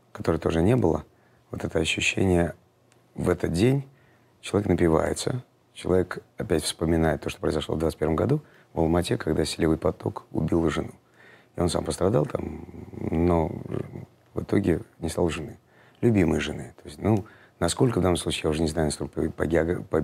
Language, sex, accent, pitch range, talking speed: Russian, male, native, 80-105 Hz, 165 wpm